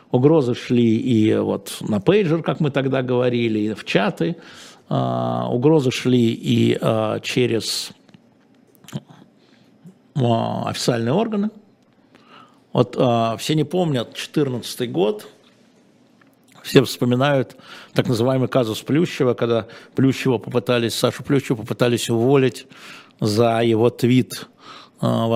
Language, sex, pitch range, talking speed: Russian, male, 115-150 Hz, 95 wpm